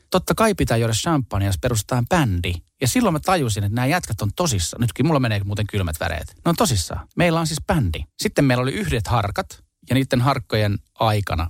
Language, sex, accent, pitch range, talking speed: Finnish, male, native, 90-120 Hz, 200 wpm